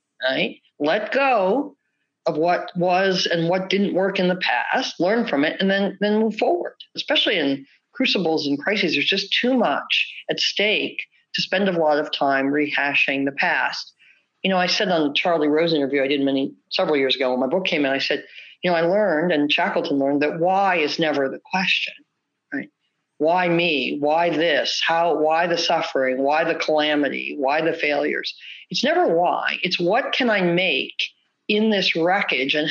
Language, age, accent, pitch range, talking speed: English, 50-69, American, 150-190 Hz, 185 wpm